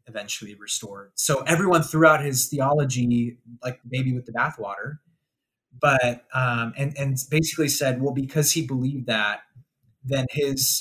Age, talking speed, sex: 20-39, 145 wpm, male